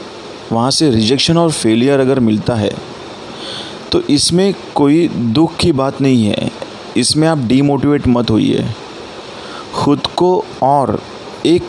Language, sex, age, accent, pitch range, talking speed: Hindi, male, 30-49, native, 120-145 Hz, 130 wpm